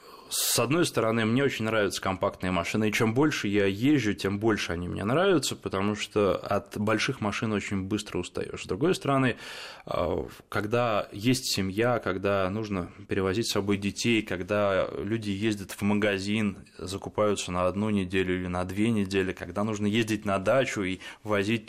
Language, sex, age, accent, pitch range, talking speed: Russian, male, 20-39, native, 95-115 Hz, 160 wpm